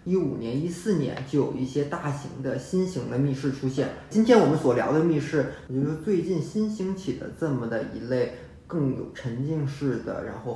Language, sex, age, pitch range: Chinese, male, 20-39, 130-150 Hz